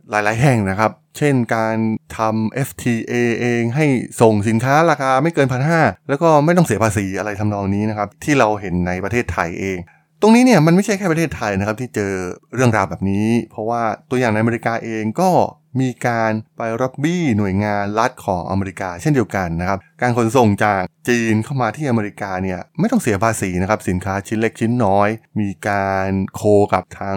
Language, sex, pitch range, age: Thai, male, 100-130 Hz, 20-39